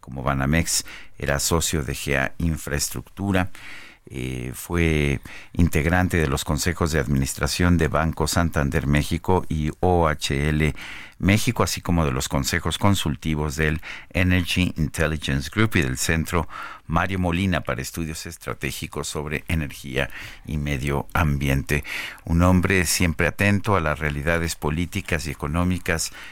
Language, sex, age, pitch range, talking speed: Spanish, male, 50-69, 75-85 Hz, 125 wpm